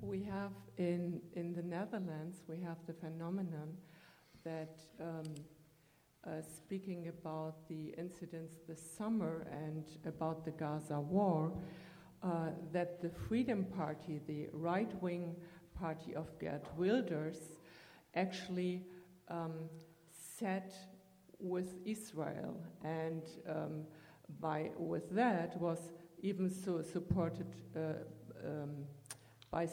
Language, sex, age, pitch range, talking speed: English, female, 50-69, 160-185 Hz, 105 wpm